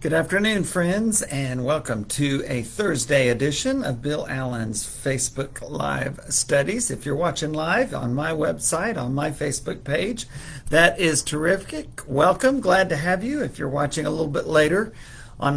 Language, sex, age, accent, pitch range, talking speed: English, male, 50-69, American, 125-150 Hz, 160 wpm